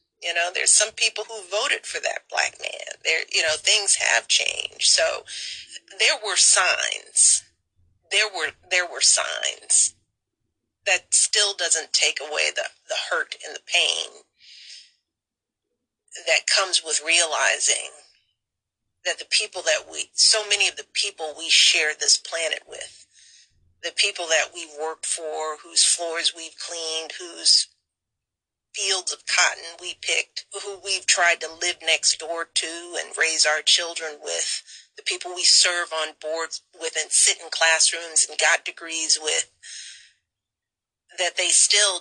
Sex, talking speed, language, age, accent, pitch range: female, 145 wpm, English, 40-59, American, 110-185 Hz